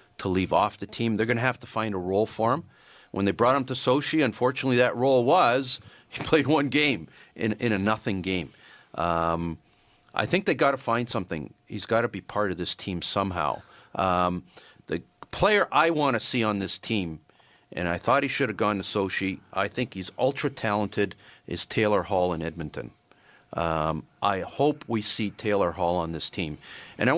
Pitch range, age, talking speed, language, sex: 100-140 Hz, 50-69, 200 wpm, English, male